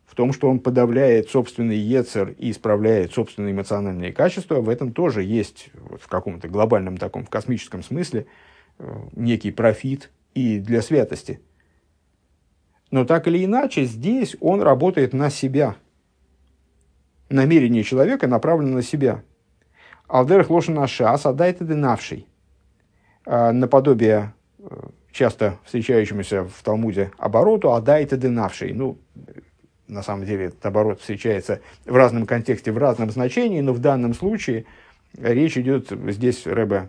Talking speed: 130 wpm